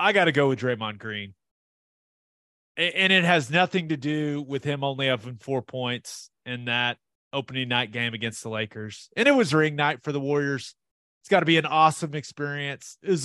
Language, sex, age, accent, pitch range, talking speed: English, male, 30-49, American, 120-175 Hz, 195 wpm